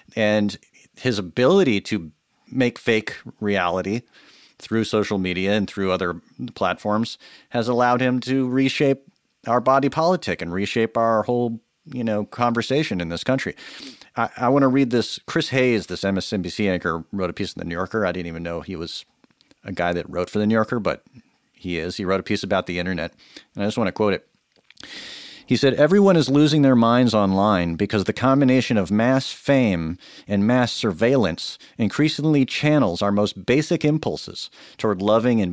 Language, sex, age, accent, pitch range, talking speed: English, male, 40-59, American, 100-135 Hz, 180 wpm